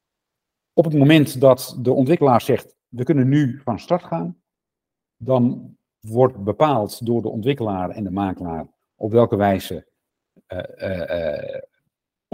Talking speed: 130 wpm